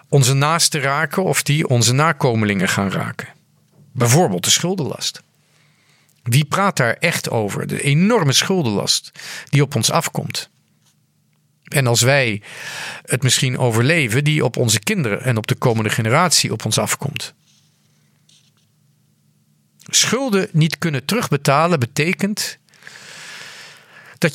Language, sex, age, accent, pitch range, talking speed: Dutch, male, 40-59, Dutch, 125-160 Hz, 120 wpm